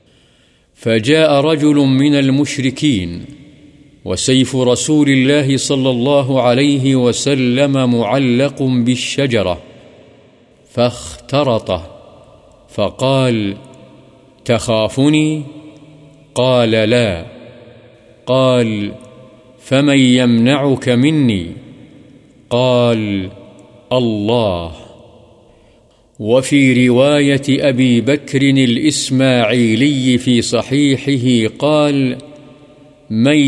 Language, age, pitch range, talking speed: Urdu, 50-69, 120-140 Hz, 60 wpm